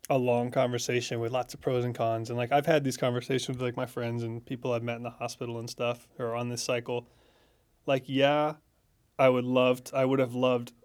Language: English